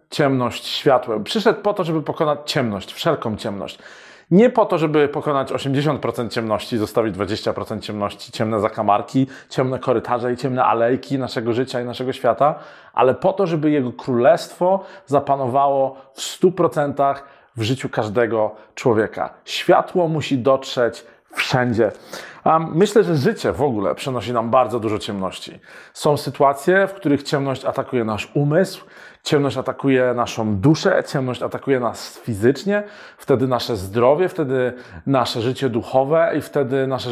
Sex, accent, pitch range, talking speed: male, native, 120-155 Hz, 140 wpm